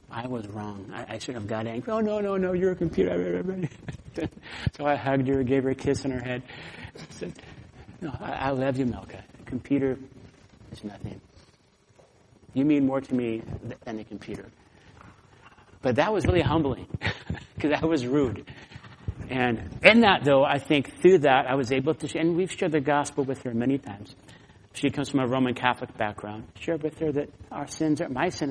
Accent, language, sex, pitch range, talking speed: American, English, male, 120-160 Hz, 195 wpm